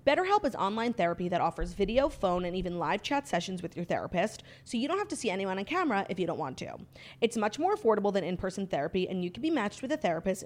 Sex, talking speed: female, 260 wpm